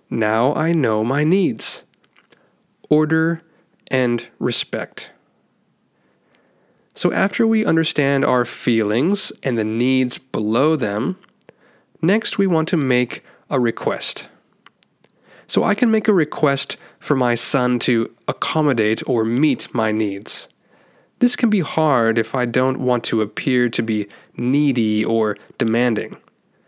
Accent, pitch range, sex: American, 120-175 Hz, male